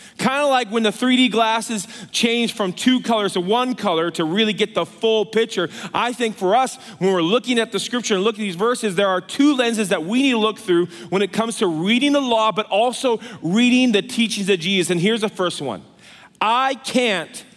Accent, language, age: American, English, 30-49